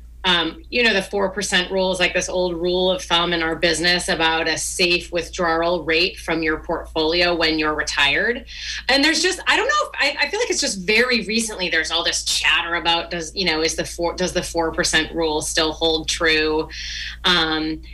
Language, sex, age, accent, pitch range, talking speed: English, female, 30-49, American, 165-200 Hz, 210 wpm